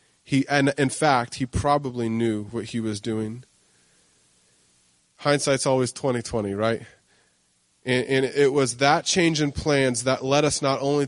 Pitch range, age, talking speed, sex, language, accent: 110-135 Hz, 20-39, 155 wpm, male, English, American